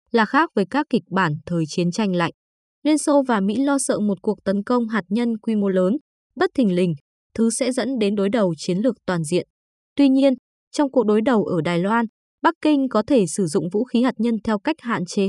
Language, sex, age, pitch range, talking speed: Vietnamese, female, 20-39, 195-250 Hz, 245 wpm